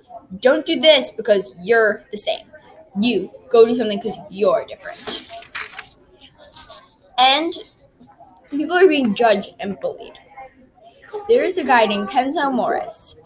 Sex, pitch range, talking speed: female, 225-330 Hz, 125 wpm